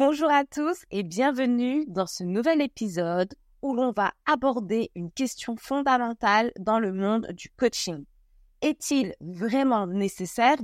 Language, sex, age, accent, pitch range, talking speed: French, female, 20-39, French, 200-280 Hz, 135 wpm